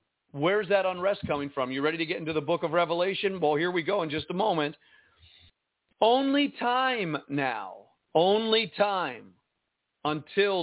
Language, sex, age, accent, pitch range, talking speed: English, male, 50-69, American, 175-230 Hz, 160 wpm